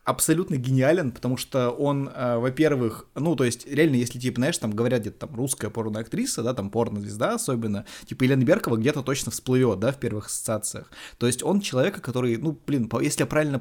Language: Russian